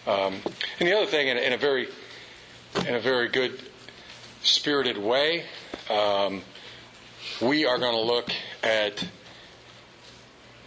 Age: 40-59